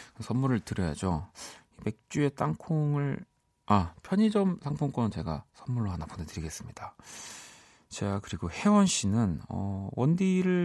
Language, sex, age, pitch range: Korean, male, 40-59, 95-155 Hz